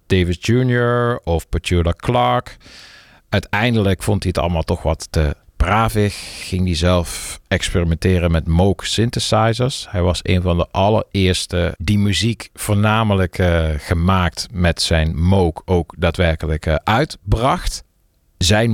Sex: male